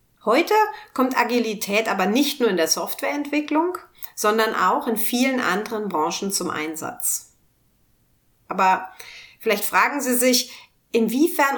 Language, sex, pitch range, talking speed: German, female, 205-290 Hz, 120 wpm